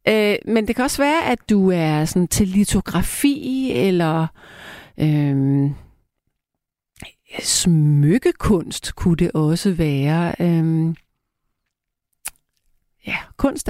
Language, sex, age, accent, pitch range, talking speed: Danish, female, 40-59, native, 160-205 Hz, 90 wpm